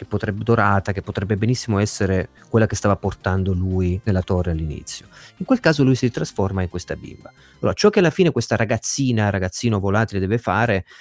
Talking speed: 190 wpm